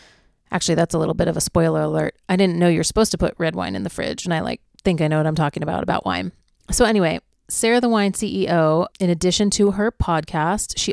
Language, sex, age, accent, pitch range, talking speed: English, female, 30-49, American, 160-190 Hz, 245 wpm